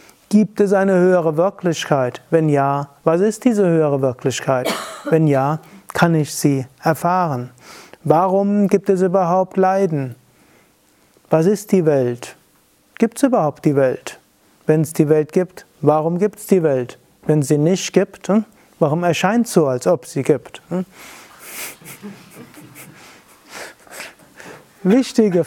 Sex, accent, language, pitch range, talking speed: male, German, German, 155-190 Hz, 135 wpm